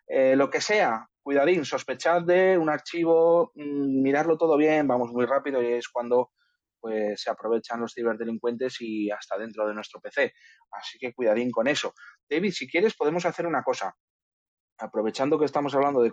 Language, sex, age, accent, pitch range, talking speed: Spanish, male, 20-39, Spanish, 120-150 Hz, 175 wpm